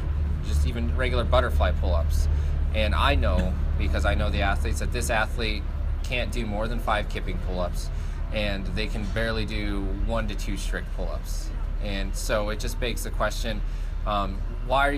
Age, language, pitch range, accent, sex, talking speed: 20-39, English, 80-110 Hz, American, male, 170 wpm